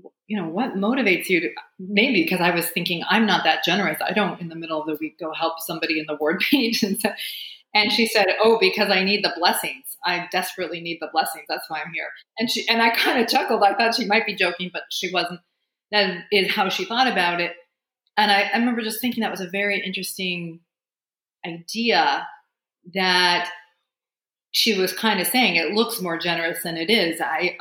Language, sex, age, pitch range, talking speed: English, female, 30-49, 175-215 Hz, 205 wpm